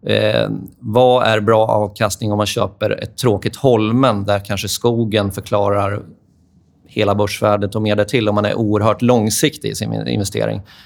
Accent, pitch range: native, 105-120 Hz